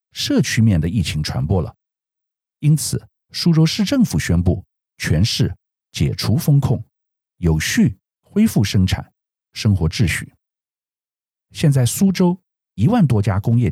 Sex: male